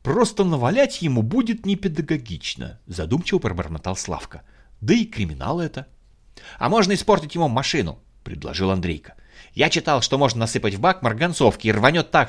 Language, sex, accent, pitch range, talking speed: Russian, male, native, 95-160 Hz, 155 wpm